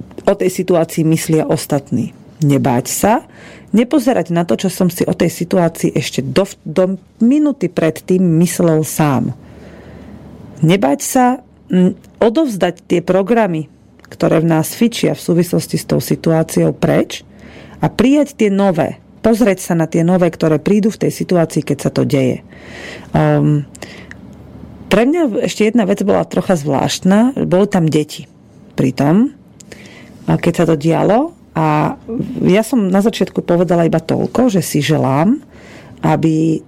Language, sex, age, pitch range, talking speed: Slovak, female, 40-59, 155-205 Hz, 145 wpm